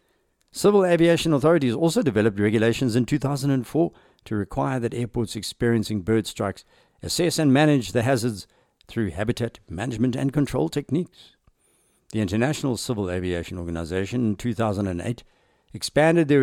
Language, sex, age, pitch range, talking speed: English, male, 60-79, 105-135 Hz, 130 wpm